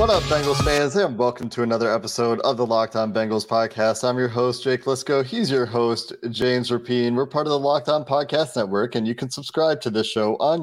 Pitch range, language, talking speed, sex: 105-130 Hz, English, 220 wpm, male